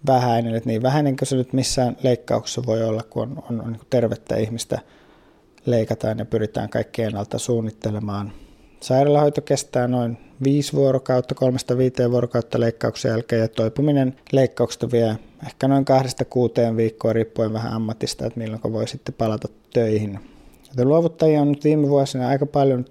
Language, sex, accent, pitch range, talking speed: Finnish, male, native, 115-135 Hz, 150 wpm